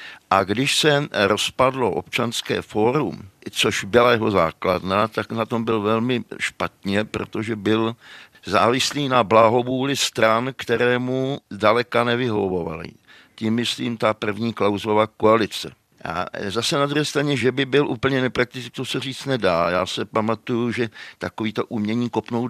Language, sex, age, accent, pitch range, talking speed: Czech, male, 60-79, native, 105-125 Hz, 145 wpm